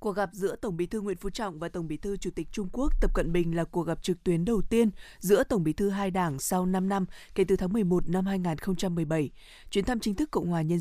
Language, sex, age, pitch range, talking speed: Vietnamese, female, 20-39, 170-215 Hz, 270 wpm